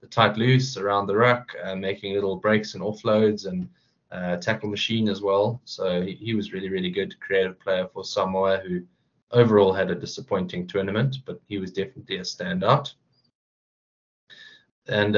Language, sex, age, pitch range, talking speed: English, male, 20-39, 95-110 Hz, 160 wpm